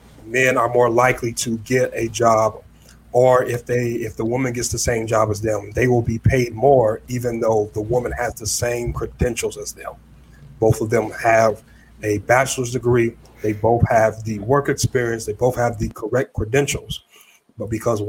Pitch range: 110-125 Hz